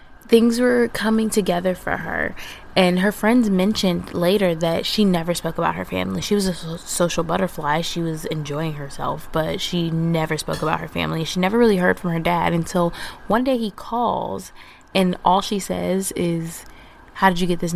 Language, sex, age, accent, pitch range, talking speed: English, female, 20-39, American, 165-215 Hz, 190 wpm